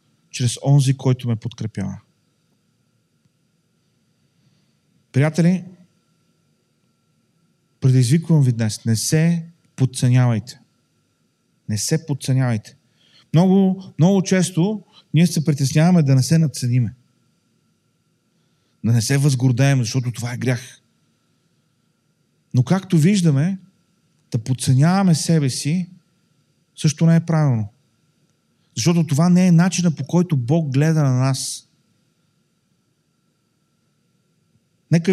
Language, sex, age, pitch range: Bulgarian, male, 40-59, 130-170 Hz